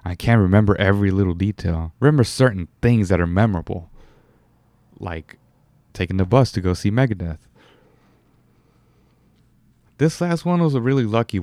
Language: English